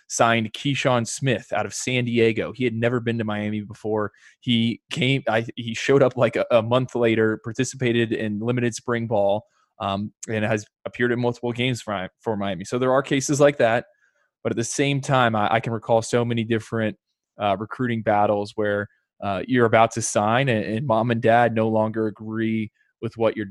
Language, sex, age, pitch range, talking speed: English, male, 20-39, 110-125 Hz, 195 wpm